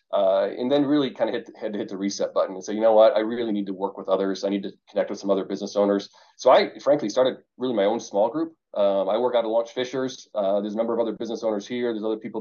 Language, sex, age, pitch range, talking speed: English, male, 30-49, 105-125 Hz, 295 wpm